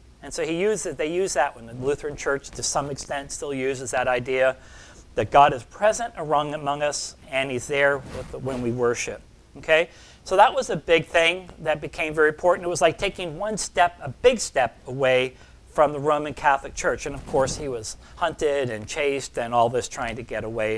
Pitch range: 135-180 Hz